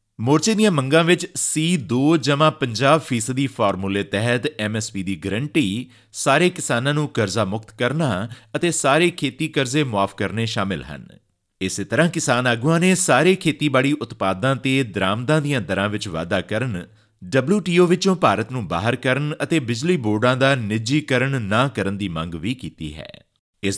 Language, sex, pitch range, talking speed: Punjabi, male, 105-150 Hz, 130 wpm